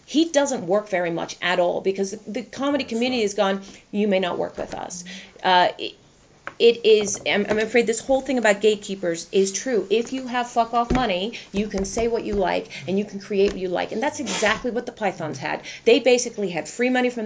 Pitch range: 180-235 Hz